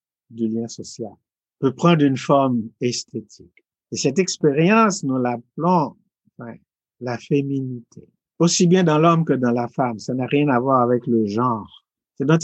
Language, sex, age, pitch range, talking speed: English, male, 60-79, 120-150 Hz, 165 wpm